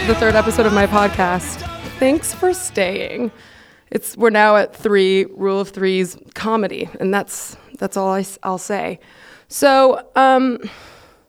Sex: female